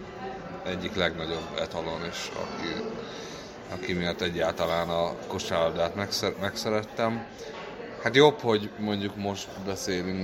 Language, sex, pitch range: Hungarian, male, 90-105 Hz